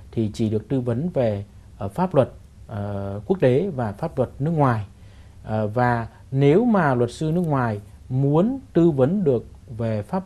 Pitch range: 105-135 Hz